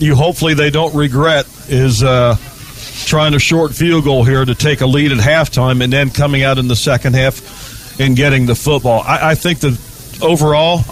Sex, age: male, 50-69